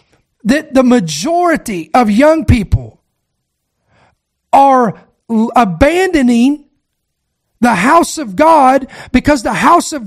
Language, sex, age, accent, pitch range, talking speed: English, male, 50-69, American, 255-330 Hz, 95 wpm